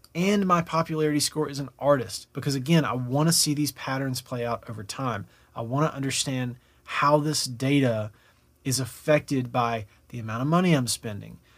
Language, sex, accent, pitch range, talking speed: English, male, American, 125-150 Hz, 180 wpm